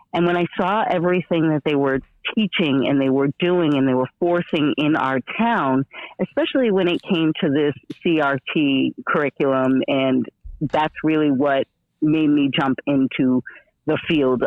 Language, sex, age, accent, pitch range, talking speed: English, female, 40-59, American, 140-180 Hz, 160 wpm